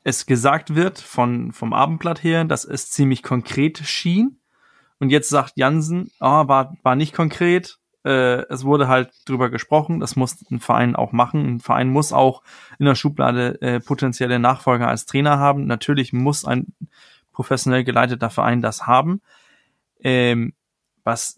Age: 20-39